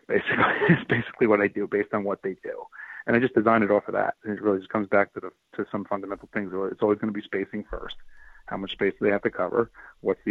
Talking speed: 270 wpm